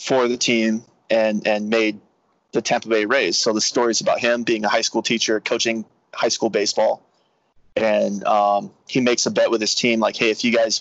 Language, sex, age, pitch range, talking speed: English, male, 30-49, 110-125 Hz, 210 wpm